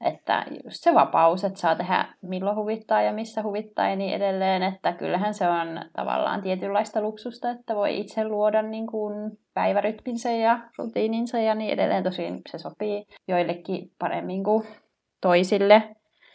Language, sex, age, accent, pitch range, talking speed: Finnish, female, 20-39, native, 175-210 Hz, 145 wpm